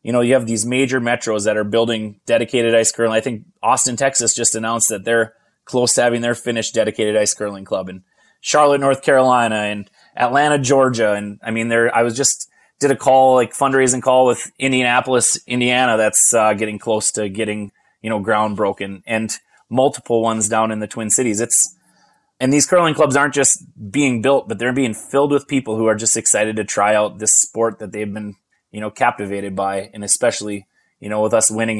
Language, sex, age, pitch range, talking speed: English, male, 20-39, 105-120 Hz, 205 wpm